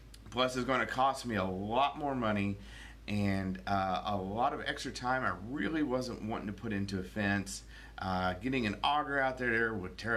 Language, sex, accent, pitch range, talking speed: English, male, American, 105-135 Hz, 195 wpm